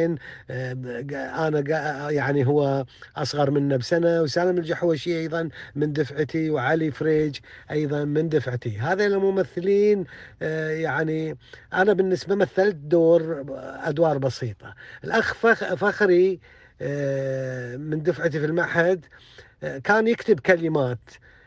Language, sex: Arabic, male